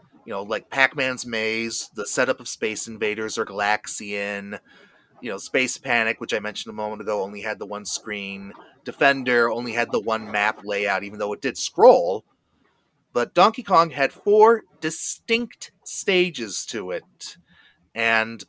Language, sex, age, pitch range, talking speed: English, male, 30-49, 110-175 Hz, 160 wpm